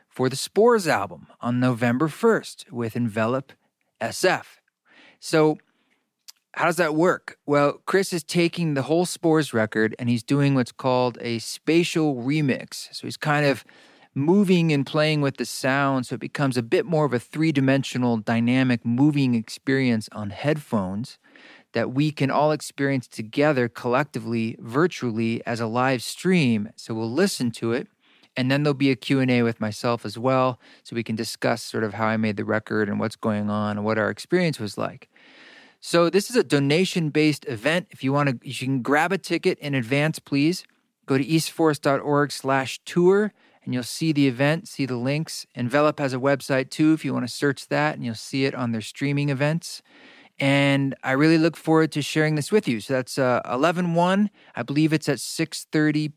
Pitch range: 120-155 Hz